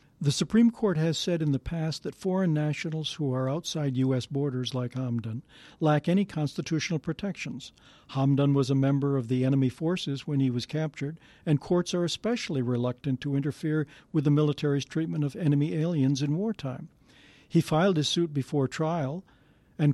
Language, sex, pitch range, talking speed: English, male, 135-160 Hz, 170 wpm